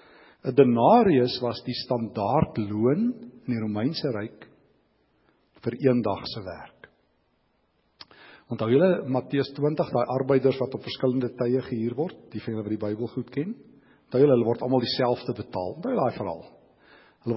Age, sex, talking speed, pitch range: 50-69, male, 155 wpm, 110-135 Hz